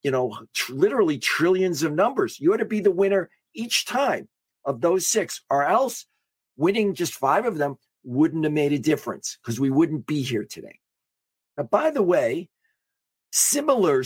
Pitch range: 120-175 Hz